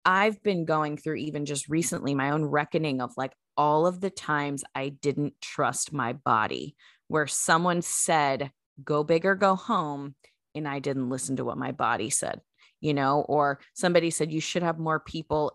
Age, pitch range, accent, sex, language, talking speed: 20-39, 140-165 Hz, American, female, English, 185 wpm